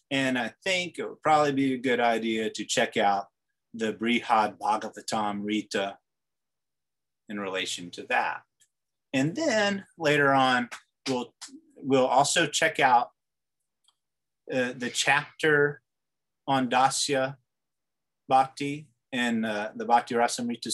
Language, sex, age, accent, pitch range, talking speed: English, male, 30-49, American, 110-140 Hz, 120 wpm